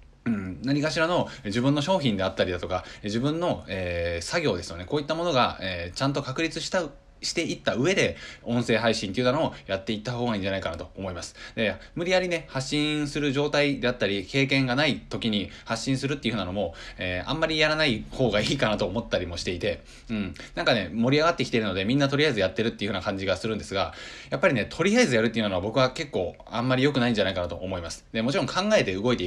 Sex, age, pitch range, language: male, 20-39, 95-140 Hz, Japanese